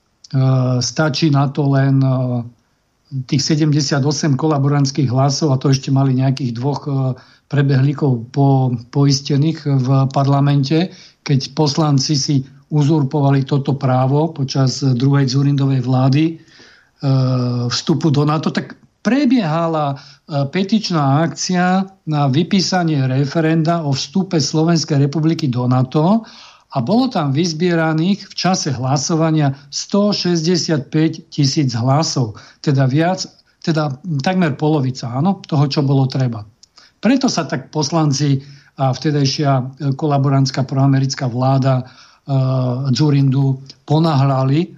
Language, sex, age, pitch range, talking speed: Slovak, male, 50-69, 135-165 Hz, 110 wpm